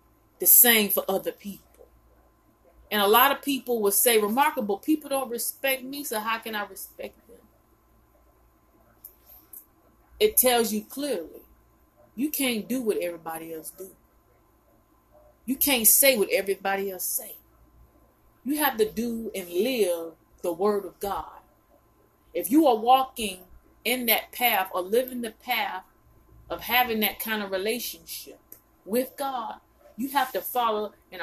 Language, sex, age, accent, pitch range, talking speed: English, female, 30-49, American, 190-245 Hz, 145 wpm